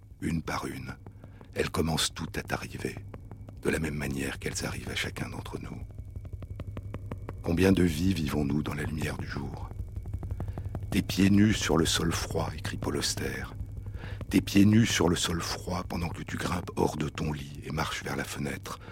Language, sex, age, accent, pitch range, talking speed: French, male, 60-79, French, 80-95 Hz, 180 wpm